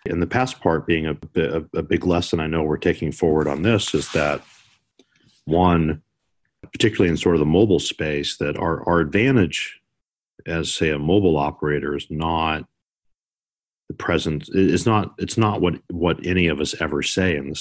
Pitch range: 80-95 Hz